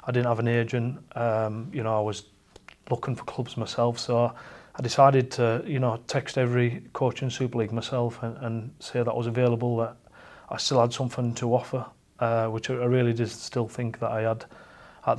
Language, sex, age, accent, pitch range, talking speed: English, male, 30-49, British, 115-130 Hz, 205 wpm